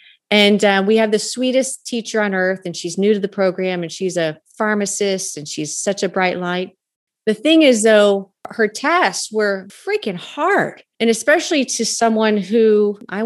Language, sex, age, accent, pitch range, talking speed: English, female, 30-49, American, 190-260 Hz, 180 wpm